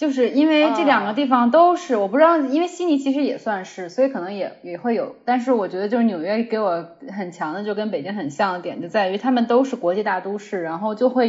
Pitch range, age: 195-270 Hz, 10-29